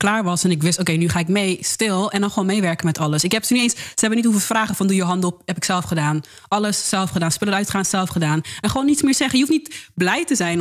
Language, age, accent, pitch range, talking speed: Dutch, 20-39, Dutch, 175-220 Hz, 310 wpm